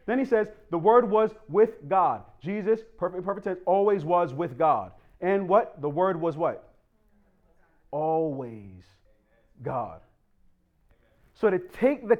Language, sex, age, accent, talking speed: English, male, 30-49, American, 135 wpm